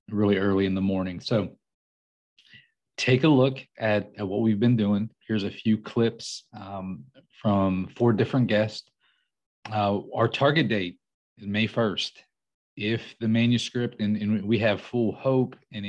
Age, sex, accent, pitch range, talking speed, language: 30-49, male, American, 100-115 Hz, 155 wpm, English